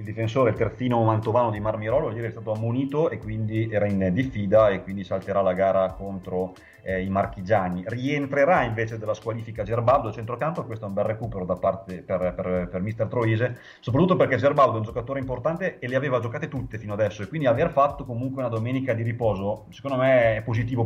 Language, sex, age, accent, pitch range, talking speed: Italian, male, 30-49, native, 100-125 Hz, 205 wpm